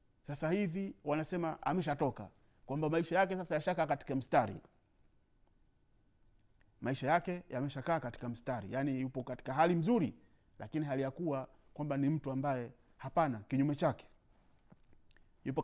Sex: male